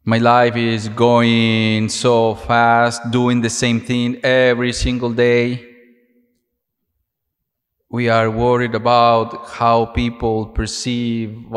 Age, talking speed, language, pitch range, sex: 30-49, 105 wpm, English, 115-140 Hz, male